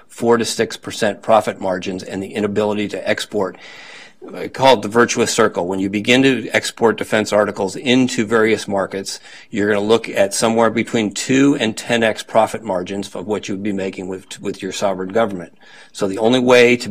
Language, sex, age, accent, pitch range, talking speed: English, male, 40-59, American, 100-115 Hz, 185 wpm